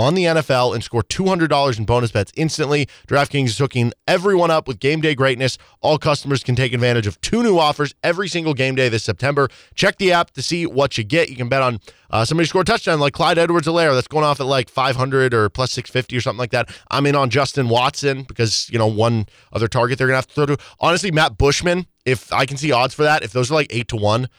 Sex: male